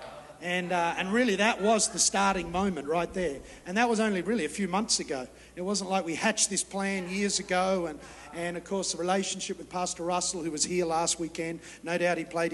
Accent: Australian